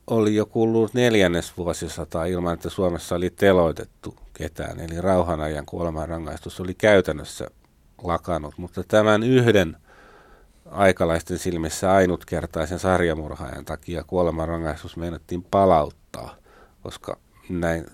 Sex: male